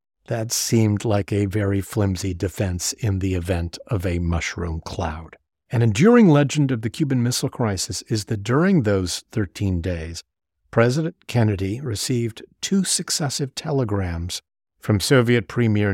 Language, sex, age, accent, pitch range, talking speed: English, male, 50-69, American, 95-130 Hz, 140 wpm